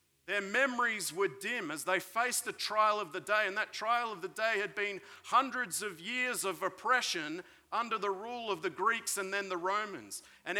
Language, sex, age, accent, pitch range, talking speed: English, male, 40-59, Australian, 175-220 Hz, 205 wpm